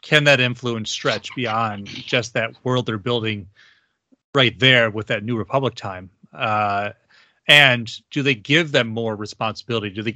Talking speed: 160 wpm